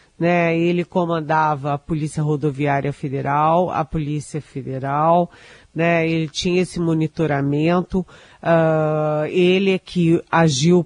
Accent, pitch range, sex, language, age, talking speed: Brazilian, 155-185 Hz, female, Portuguese, 40-59, 105 wpm